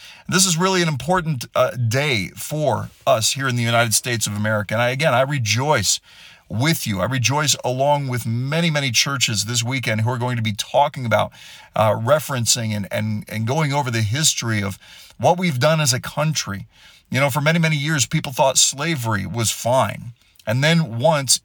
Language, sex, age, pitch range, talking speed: English, male, 40-59, 115-155 Hz, 195 wpm